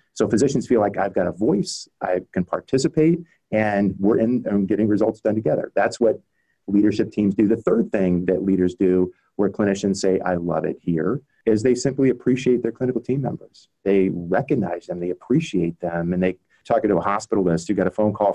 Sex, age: male, 40-59